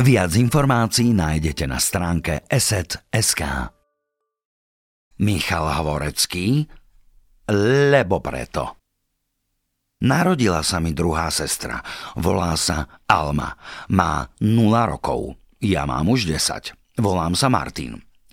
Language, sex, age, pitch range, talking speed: Slovak, male, 50-69, 80-110 Hz, 90 wpm